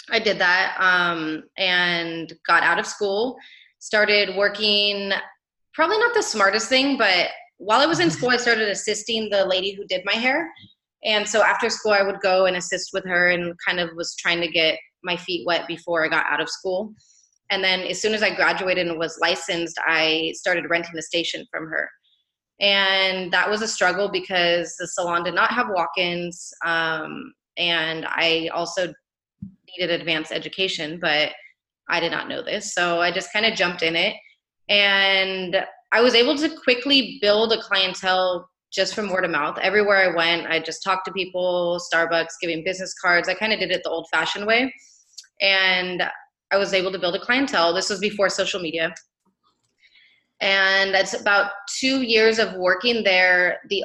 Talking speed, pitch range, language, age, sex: 180 wpm, 170-205 Hz, English, 20-39, female